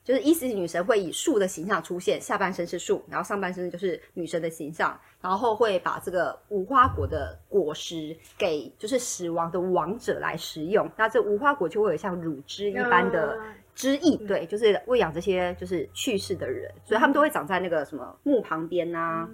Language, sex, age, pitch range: Chinese, female, 30-49, 170-250 Hz